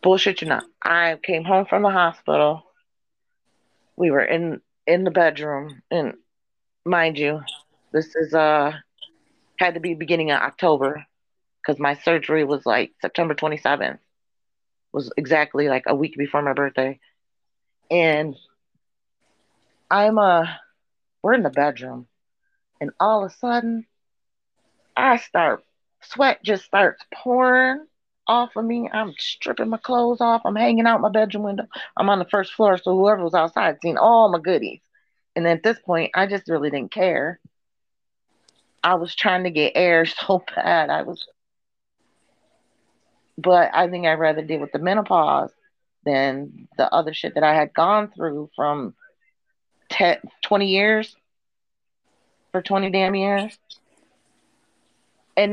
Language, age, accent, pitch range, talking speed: English, 30-49, American, 155-210 Hz, 145 wpm